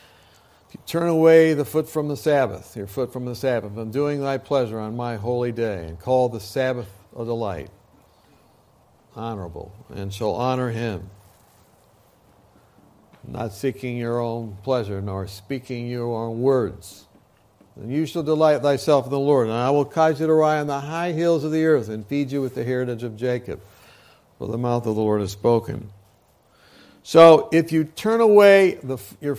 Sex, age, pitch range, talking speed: male, 60-79, 105-150 Hz, 175 wpm